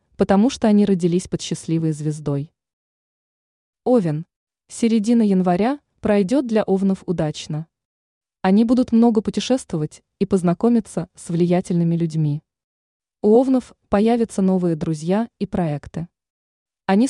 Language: Russian